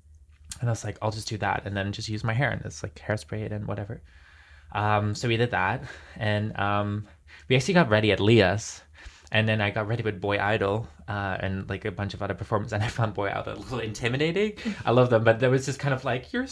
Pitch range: 100-130 Hz